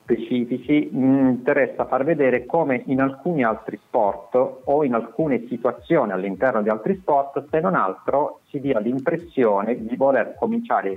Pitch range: 90-135 Hz